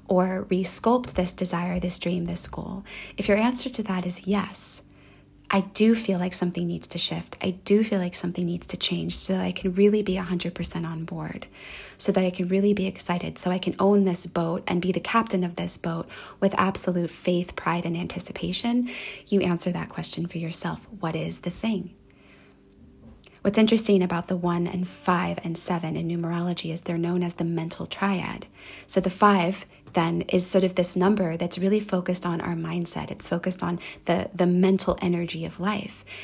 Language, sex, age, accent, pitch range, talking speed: English, female, 30-49, American, 170-190 Hz, 195 wpm